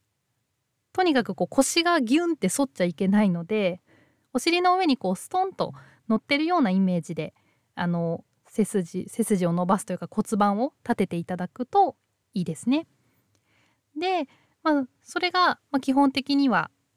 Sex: female